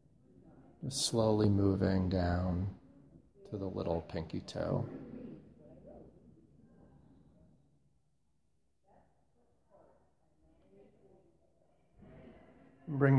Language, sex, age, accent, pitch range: English, male, 40-59, American, 95-110 Hz